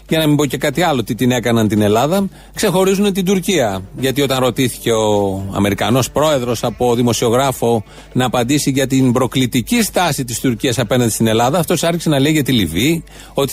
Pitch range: 130-175 Hz